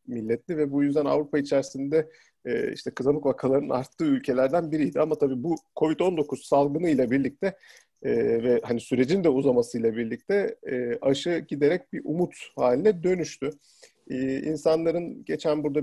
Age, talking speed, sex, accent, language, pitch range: 40-59, 145 wpm, male, native, Turkish, 130-170 Hz